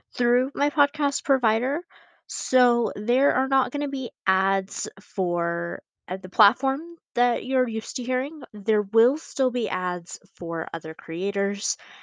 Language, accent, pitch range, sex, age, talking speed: English, American, 165-225 Hz, female, 20-39, 140 wpm